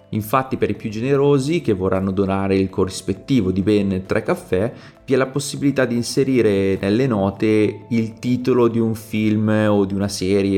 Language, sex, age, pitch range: Italian, male, 30-49, 100-115 Hz